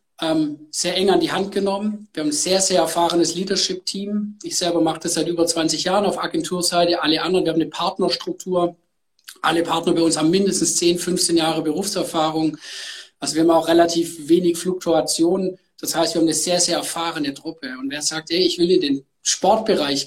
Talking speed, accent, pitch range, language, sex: 190 wpm, German, 155-190 Hz, German, male